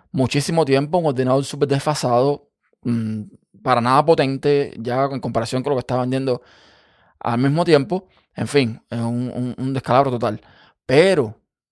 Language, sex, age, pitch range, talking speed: Spanish, male, 20-39, 125-150 Hz, 155 wpm